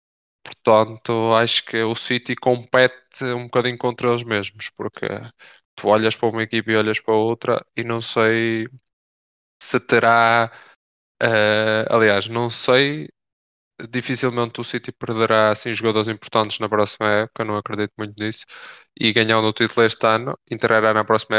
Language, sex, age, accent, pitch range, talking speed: English, male, 10-29, Brazilian, 105-120 Hz, 150 wpm